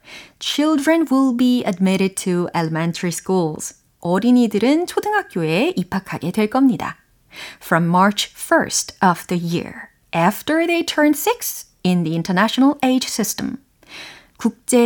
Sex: female